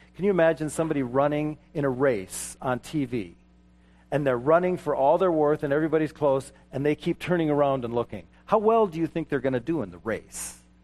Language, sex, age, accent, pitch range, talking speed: English, male, 40-59, American, 110-165 Hz, 215 wpm